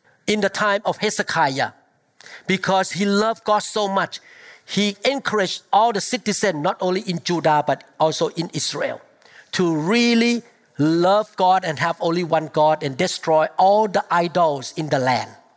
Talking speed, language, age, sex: 160 wpm, English, 50-69, male